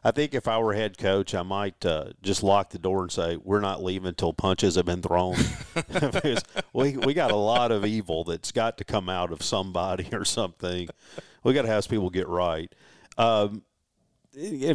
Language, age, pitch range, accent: English, 50-69, 90-115 Hz, American